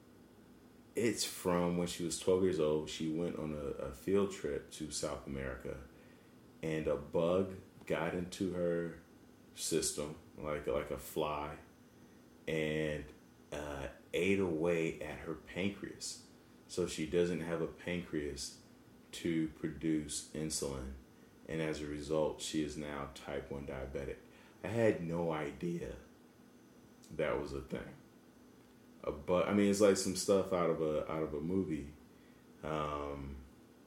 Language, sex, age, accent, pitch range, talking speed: English, male, 30-49, American, 75-90 Hz, 140 wpm